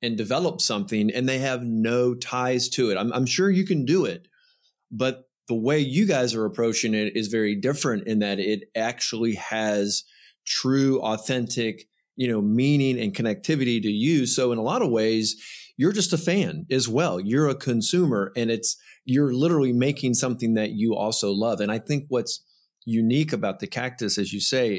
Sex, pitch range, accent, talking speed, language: male, 110-145 Hz, American, 190 wpm, English